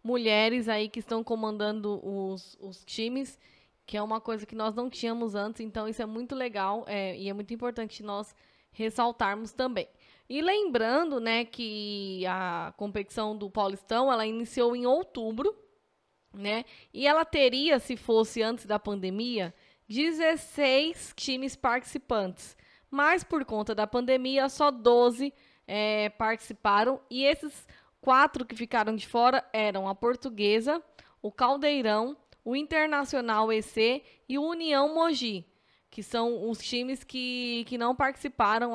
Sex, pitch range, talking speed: female, 215-270 Hz, 140 wpm